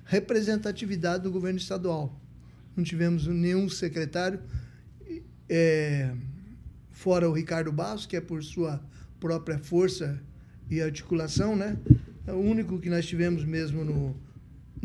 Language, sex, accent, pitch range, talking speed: Portuguese, male, Brazilian, 155-190 Hz, 125 wpm